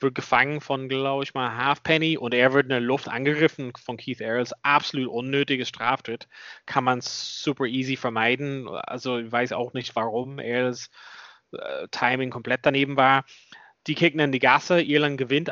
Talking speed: 170 wpm